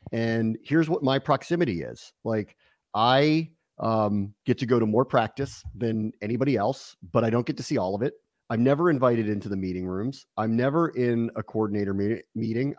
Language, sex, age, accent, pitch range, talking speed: English, male, 30-49, American, 110-145 Hz, 190 wpm